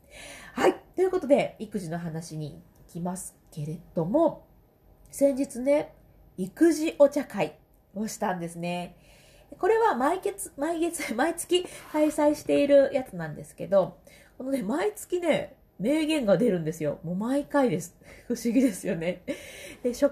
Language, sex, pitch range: Japanese, female, 175-285 Hz